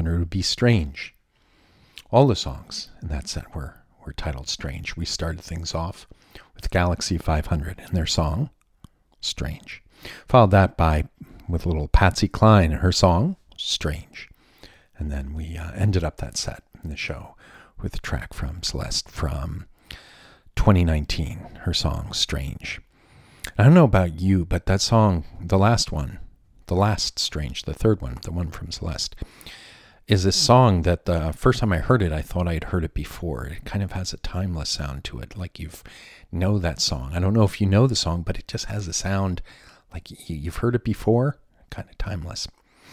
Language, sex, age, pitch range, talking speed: English, male, 50-69, 80-100 Hz, 185 wpm